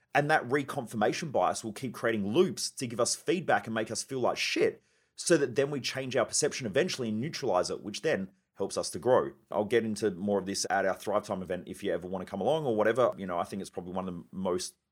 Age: 30-49